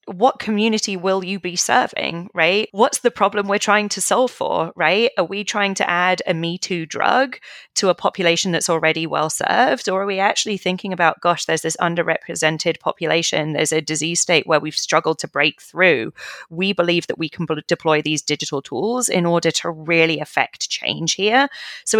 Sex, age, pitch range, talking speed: female, 30-49, 160-200 Hz, 190 wpm